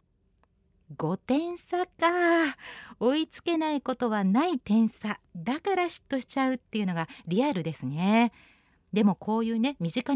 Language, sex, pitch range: Japanese, female, 200-280 Hz